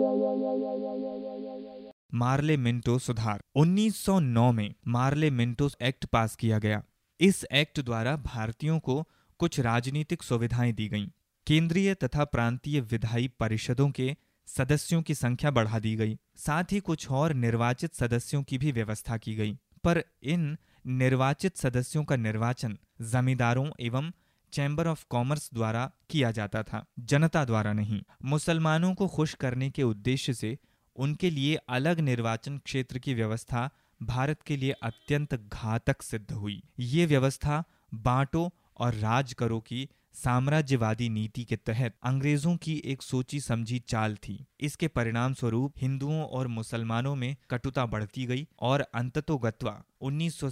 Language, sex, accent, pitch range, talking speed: Hindi, male, native, 115-145 Hz, 135 wpm